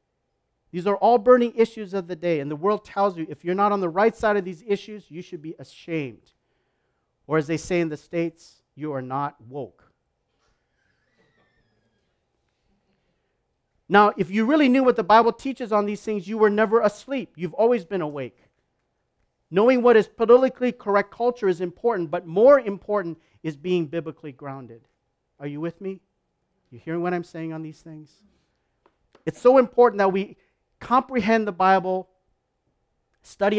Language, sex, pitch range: English, male, 155-200 Hz